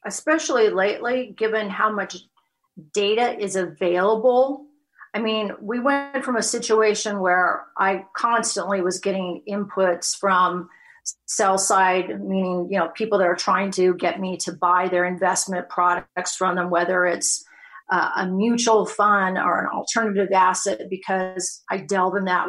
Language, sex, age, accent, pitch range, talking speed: English, female, 40-59, American, 185-240 Hz, 150 wpm